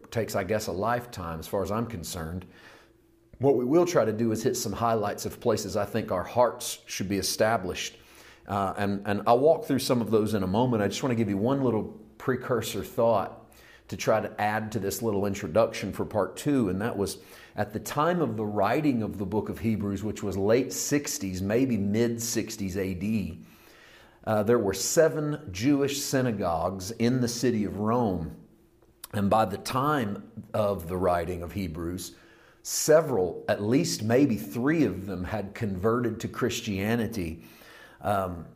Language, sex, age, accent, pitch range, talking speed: English, male, 40-59, American, 100-115 Hz, 180 wpm